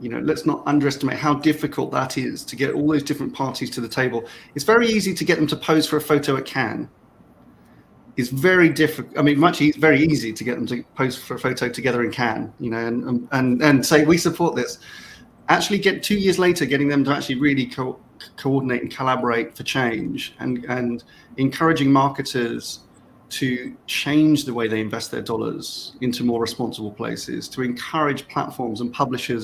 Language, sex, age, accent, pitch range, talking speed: English, male, 30-49, British, 120-150 Hz, 200 wpm